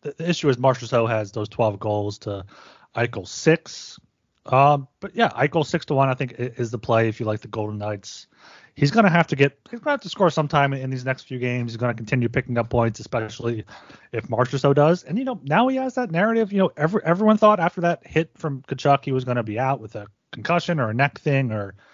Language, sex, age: English, male, 30-49